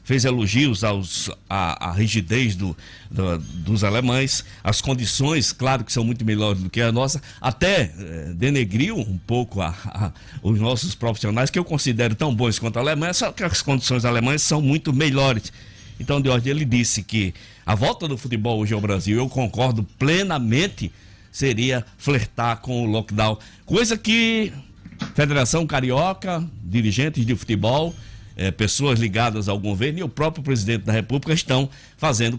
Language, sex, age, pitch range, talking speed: Portuguese, male, 60-79, 100-135 Hz, 160 wpm